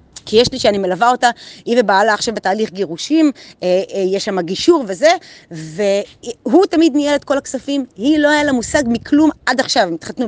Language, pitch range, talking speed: Hebrew, 190-280 Hz, 180 wpm